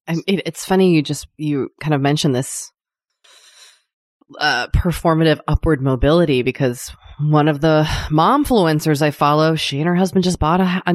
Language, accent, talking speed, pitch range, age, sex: English, American, 170 wpm, 140-180 Hz, 30-49, female